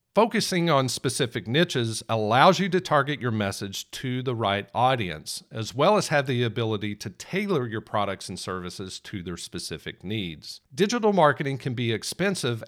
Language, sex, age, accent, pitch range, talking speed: English, male, 50-69, American, 105-150 Hz, 165 wpm